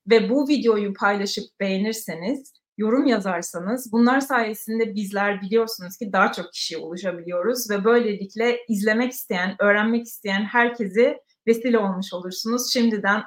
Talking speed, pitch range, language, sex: 120 wpm, 200-250 Hz, Turkish, female